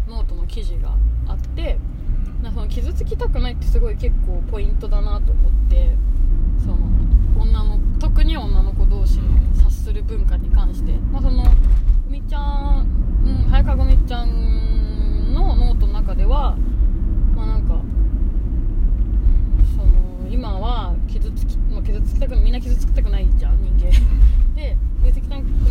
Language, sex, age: Japanese, female, 20-39